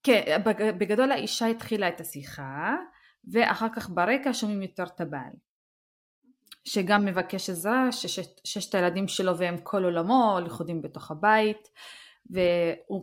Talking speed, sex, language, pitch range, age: 125 wpm, female, Hebrew, 175-225 Hz, 20-39